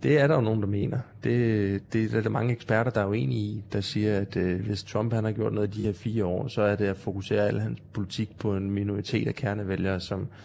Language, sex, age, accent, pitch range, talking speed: Danish, male, 20-39, native, 100-120 Hz, 265 wpm